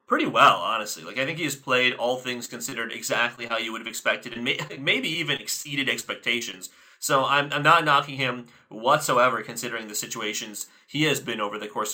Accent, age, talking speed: American, 30-49, 195 wpm